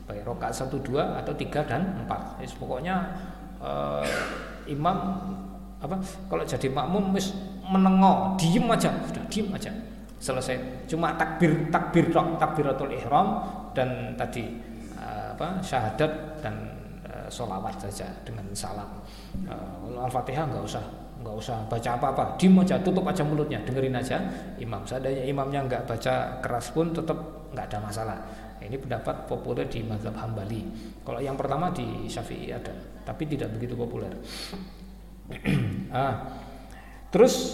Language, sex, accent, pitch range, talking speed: Indonesian, male, native, 115-170 Hz, 135 wpm